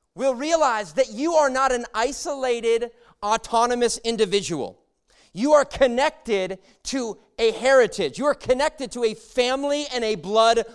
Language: English